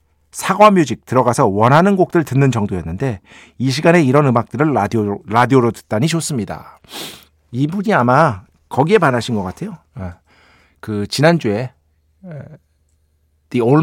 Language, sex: Korean, male